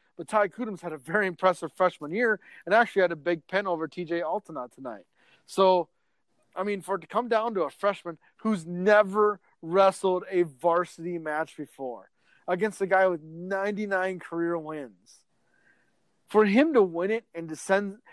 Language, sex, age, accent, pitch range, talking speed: English, male, 30-49, American, 175-275 Hz, 170 wpm